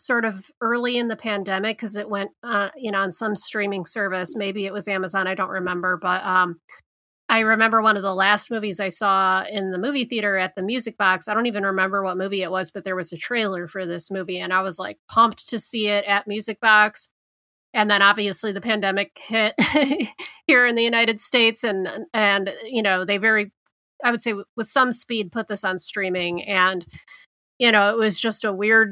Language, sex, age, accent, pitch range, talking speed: English, female, 30-49, American, 190-220 Hz, 220 wpm